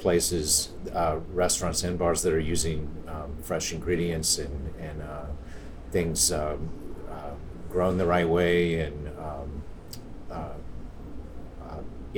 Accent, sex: American, male